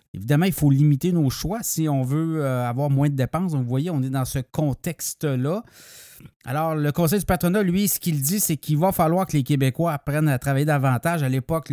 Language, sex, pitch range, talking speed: French, male, 130-170 Hz, 220 wpm